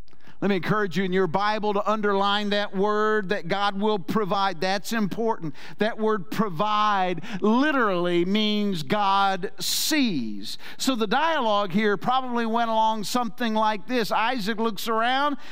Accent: American